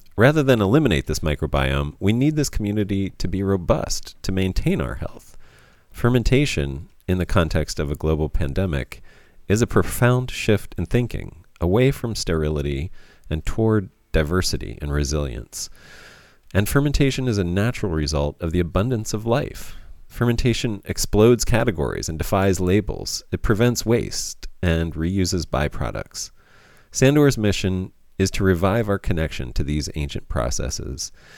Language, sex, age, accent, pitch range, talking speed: English, male, 40-59, American, 75-110 Hz, 140 wpm